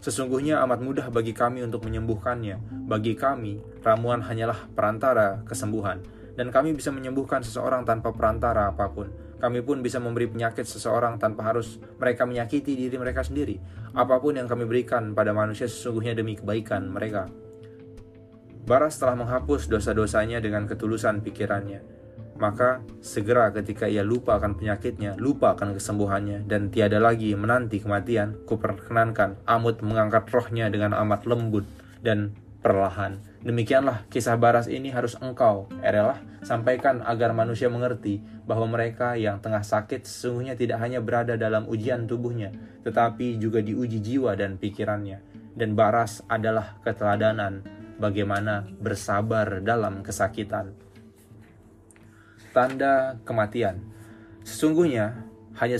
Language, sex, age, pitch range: Indonesian, male, 20-39, 105-120 Hz